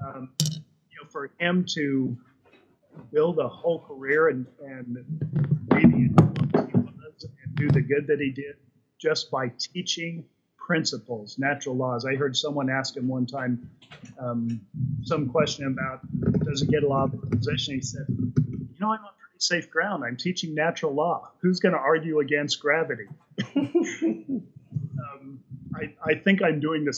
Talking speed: 155 wpm